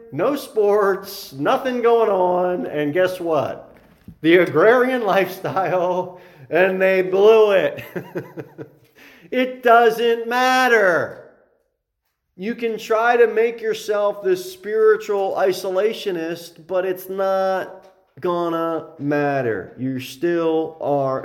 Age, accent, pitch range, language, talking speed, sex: 40-59, American, 130-190 Hz, English, 100 wpm, male